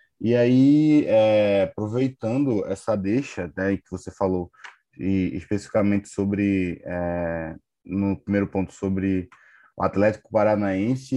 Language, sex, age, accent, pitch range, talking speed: Portuguese, male, 20-39, Brazilian, 100-130 Hz, 115 wpm